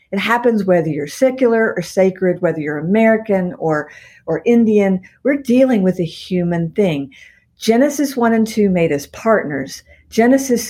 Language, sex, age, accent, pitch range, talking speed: English, female, 50-69, American, 185-255 Hz, 150 wpm